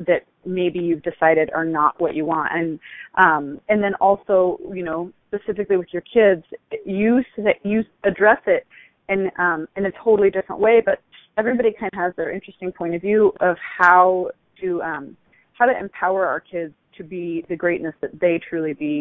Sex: female